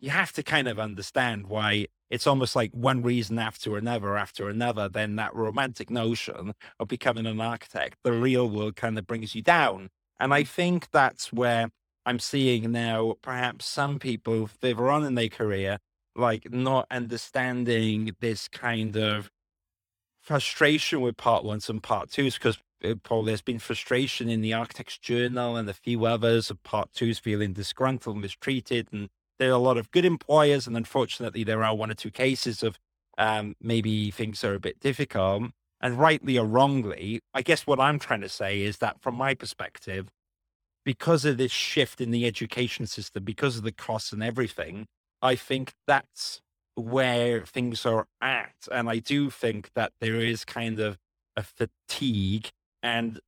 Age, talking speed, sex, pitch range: 30-49, 170 wpm, male, 110-125 Hz